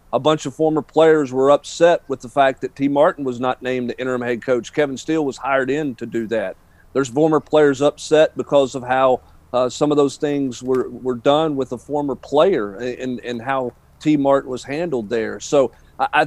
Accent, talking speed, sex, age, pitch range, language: American, 210 wpm, male, 40-59, 130-150 Hz, English